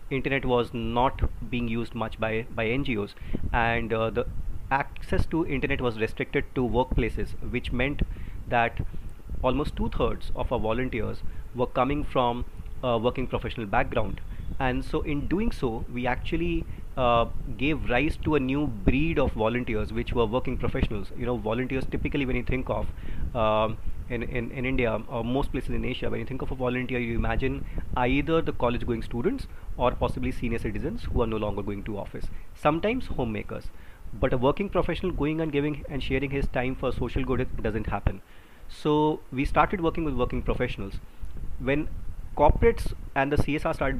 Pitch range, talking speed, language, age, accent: 110-135 Hz, 175 wpm, English, 30-49, Indian